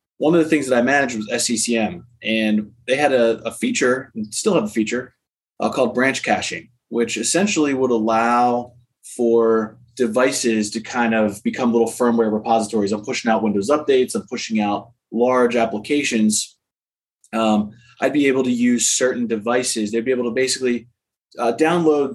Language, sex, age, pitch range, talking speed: English, male, 20-39, 110-130 Hz, 165 wpm